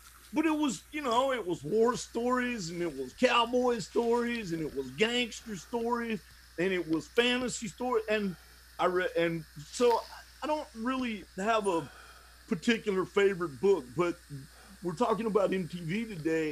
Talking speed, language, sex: 155 wpm, English, male